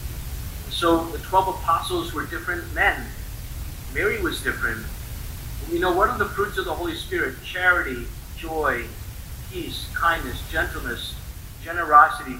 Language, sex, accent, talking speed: English, male, American, 125 wpm